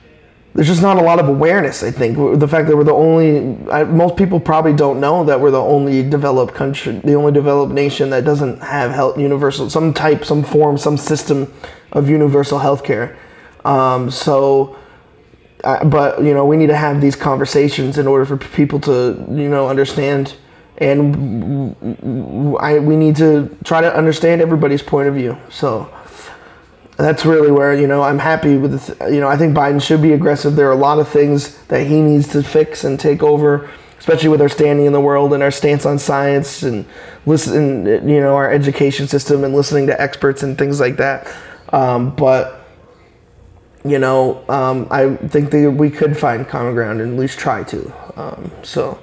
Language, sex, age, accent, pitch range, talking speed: English, male, 20-39, American, 140-150 Hz, 190 wpm